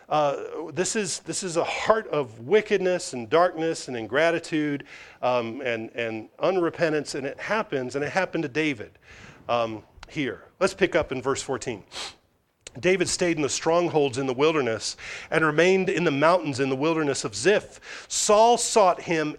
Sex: male